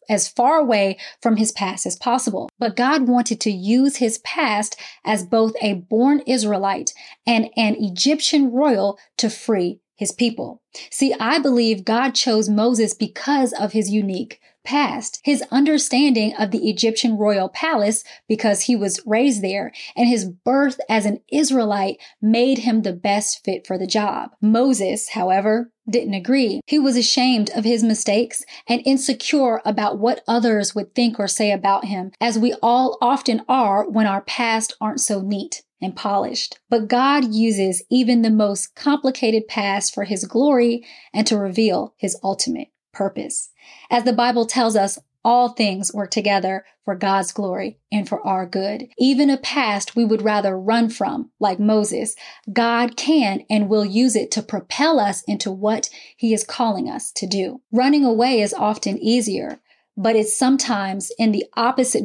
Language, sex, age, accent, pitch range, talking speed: English, female, 20-39, American, 205-250 Hz, 165 wpm